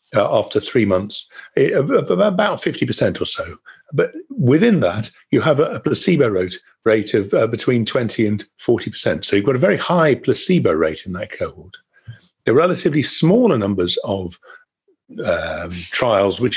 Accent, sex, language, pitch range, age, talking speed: British, male, English, 110-175 Hz, 50-69, 160 wpm